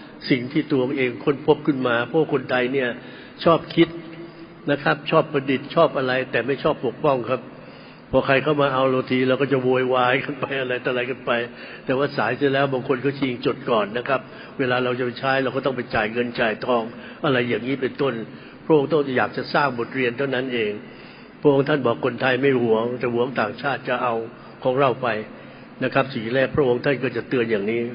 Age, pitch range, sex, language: 70-89, 130-155 Hz, male, English